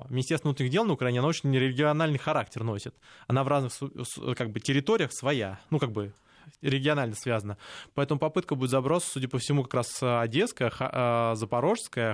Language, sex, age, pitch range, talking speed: Russian, male, 20-39, 120-150 Hz, 160 wpm